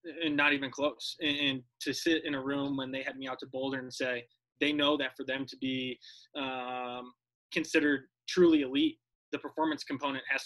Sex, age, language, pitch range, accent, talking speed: male, 20-39, English, 135-165 Hz, American, 195 wpm